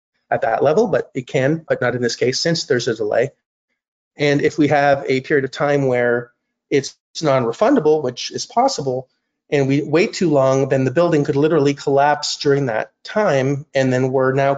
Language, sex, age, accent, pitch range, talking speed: English, male, 30-49, American, 130-155 Hz, 195 wpm